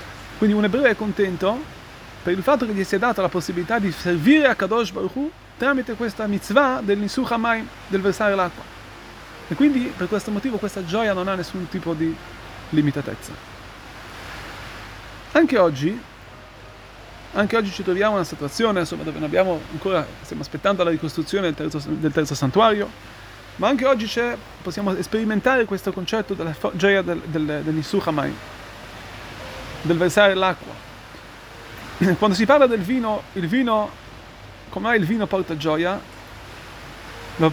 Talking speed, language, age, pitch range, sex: 145 wpm, Italian, 30-49, 155-215 Hz, male